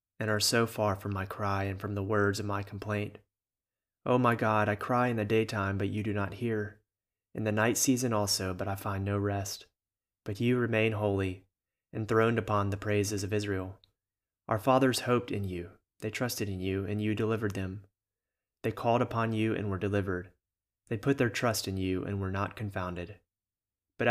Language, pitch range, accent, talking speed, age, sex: English, 95-110 Hz, American, 195 wpm, 30-49, male